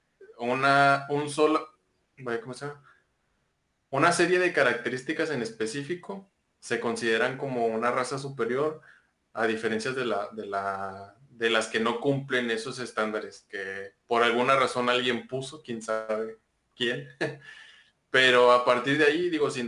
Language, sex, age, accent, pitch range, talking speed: Spanish, male, 20-39, Mexican, 115-145 Hz, 135 wpm